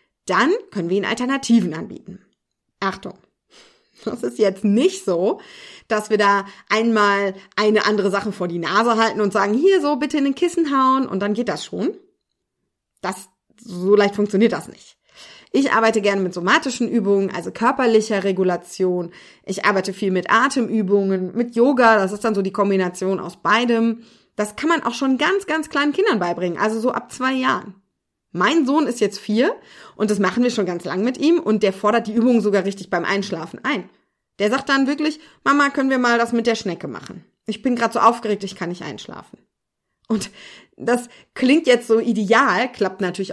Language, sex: German, female